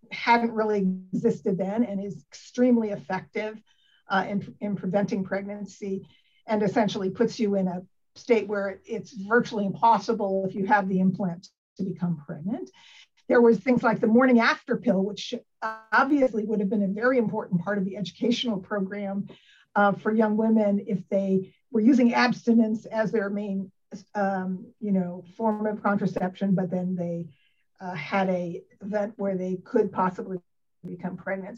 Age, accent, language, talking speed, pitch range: 50-69, American, English, 160 wpm, 195-245 Hz